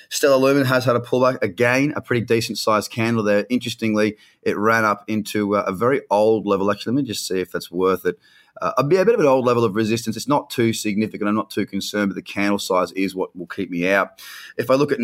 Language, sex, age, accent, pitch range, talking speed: English, male, 30-49, Australian, 100-125 Hz, 250 wpm